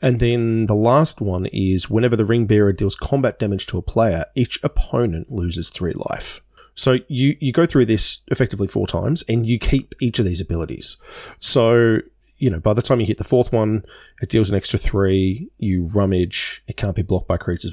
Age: 20-39